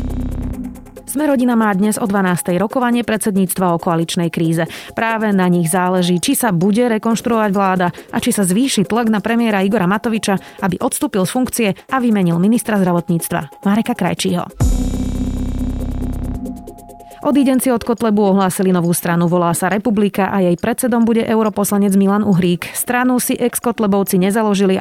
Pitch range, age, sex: 180-230 Hz, 30-49, female